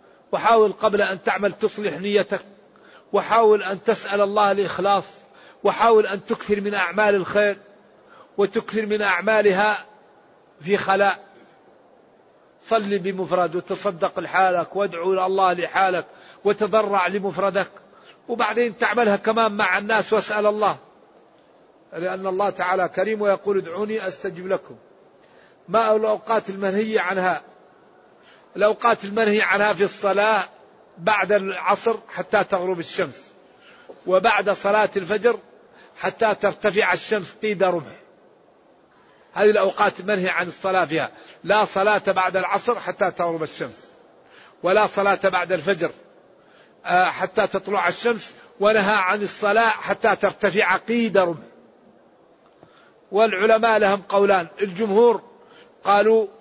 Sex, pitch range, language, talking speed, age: male, 190-215 Hz, Arabic, 105 wpm, 50-69